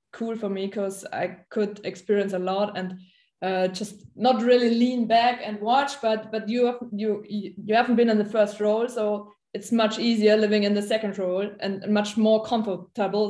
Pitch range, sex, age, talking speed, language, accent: 185-215 Hz, female, 20-39, 195 wpm, English, German